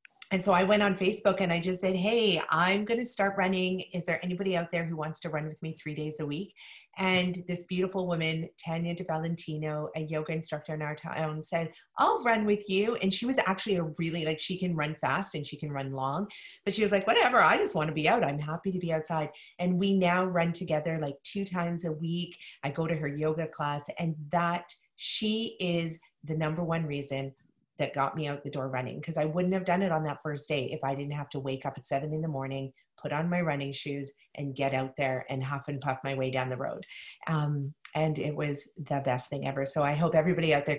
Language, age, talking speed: English, 40-59, 245 wpm